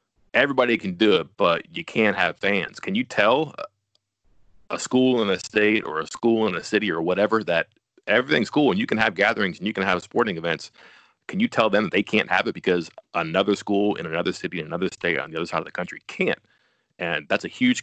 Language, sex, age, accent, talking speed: English, male, 30-49, American, 230 wpm